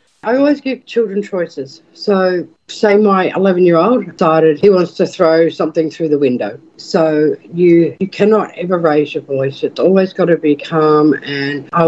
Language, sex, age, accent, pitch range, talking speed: English, female, 50-69, Australian, 160-205 Hz, 180 wpm